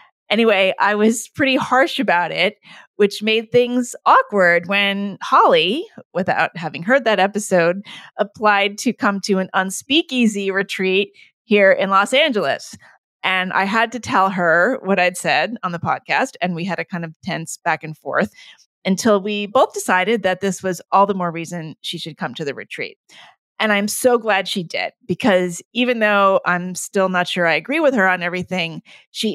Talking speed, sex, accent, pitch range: 180 wpm, female, American, 180-225 Hz